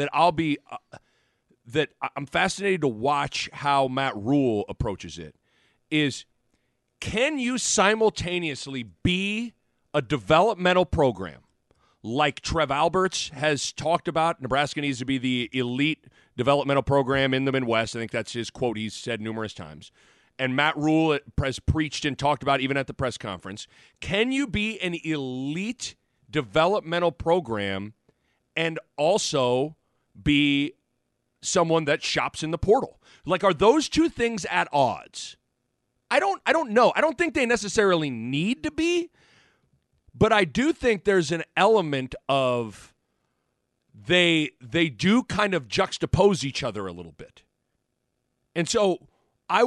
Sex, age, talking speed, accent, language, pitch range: male, 40-59, 145 wpm, American, English, 130-190 Hz